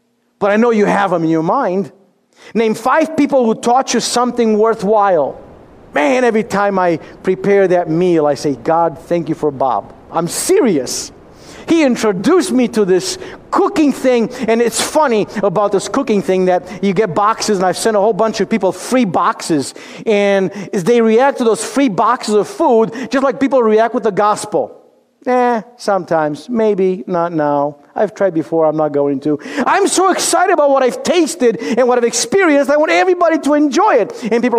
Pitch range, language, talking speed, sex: 185-250 Hz, English, 185 wpm, male